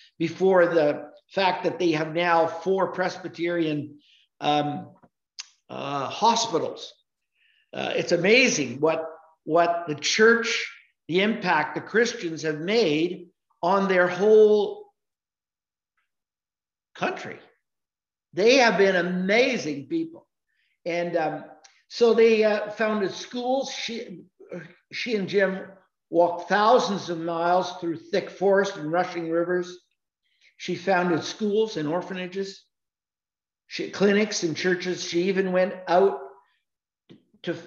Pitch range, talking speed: 165-195 Hz, 110 wpm